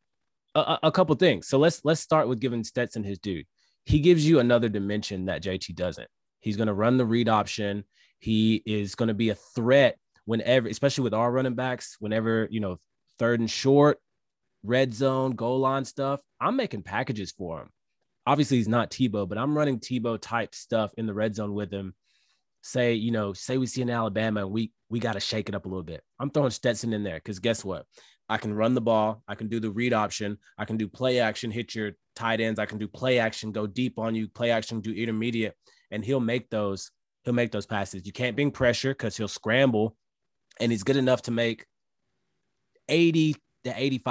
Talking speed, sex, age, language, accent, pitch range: 205 wpm, male, 20-39, English, American, 105-125 Hz